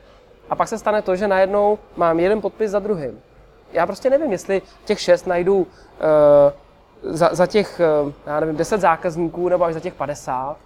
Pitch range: 160-200 Hz